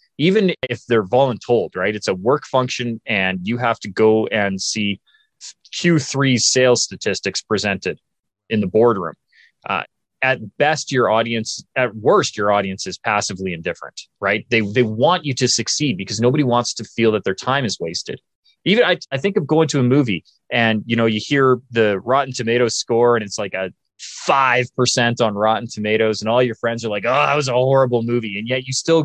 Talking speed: 195 wpm